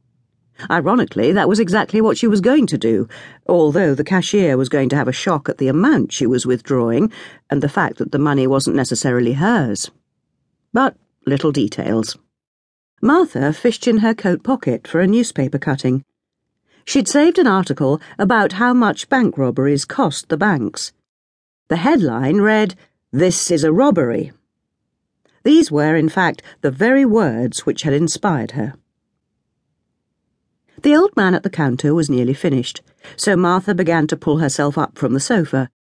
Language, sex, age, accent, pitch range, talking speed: English, female, 50-69, British, 130-215 Hz, 160 wpm